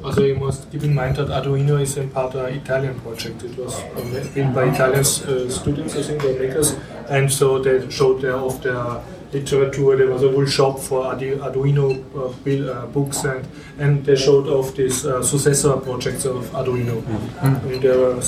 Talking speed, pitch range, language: 170 wpm, 130-150 Hz, German